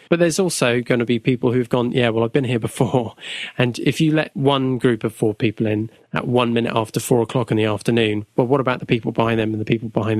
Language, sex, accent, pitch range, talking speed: English, male, British, 125-175 Hz, 265 wpm